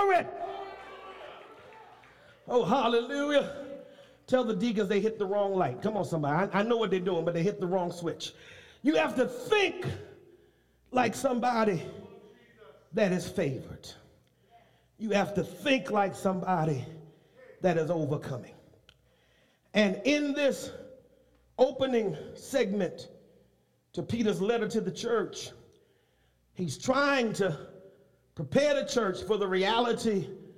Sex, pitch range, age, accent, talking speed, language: male, 190-275 Hz, 40-59, American, 125 wpm, English